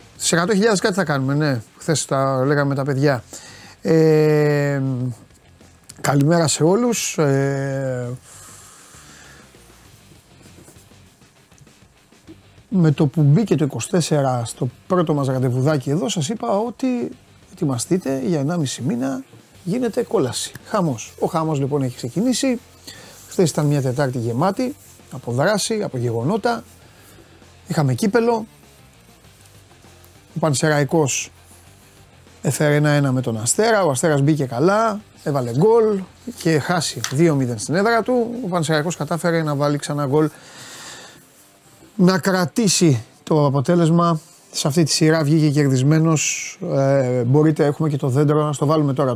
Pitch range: 130-170 Hz